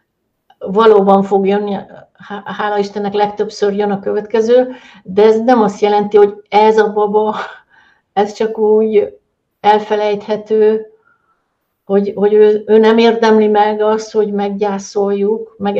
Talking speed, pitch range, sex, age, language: 125 wpm, 205-225 Hz, female, 60-79, Hungarian